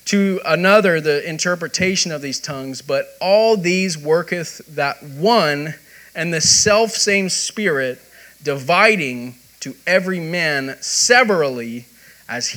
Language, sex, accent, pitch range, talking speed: English, male, American, 135-185 Hz, 115 wpm